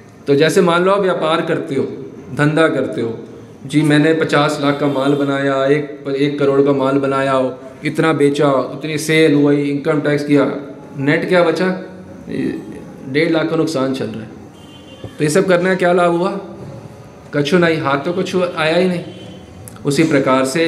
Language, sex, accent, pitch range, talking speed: Hindi, male, native, 140-215 Hz, 175 wpm